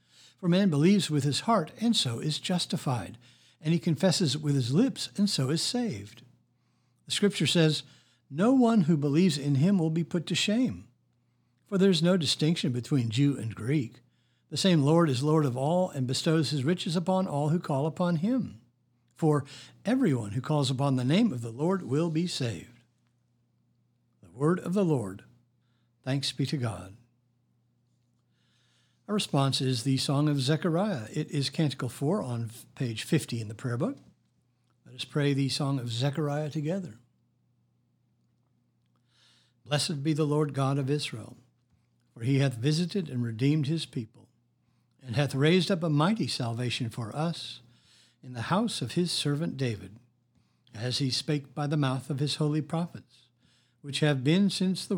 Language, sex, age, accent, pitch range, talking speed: English, male, 60-79, American, 120-165 Hz, 170 wpm